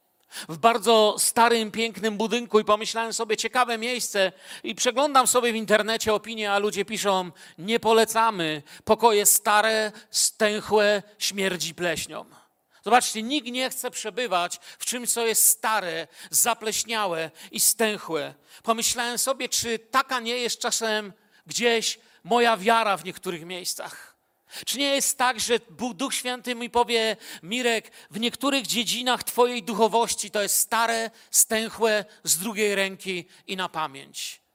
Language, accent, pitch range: Polish, native, 205-240 Hz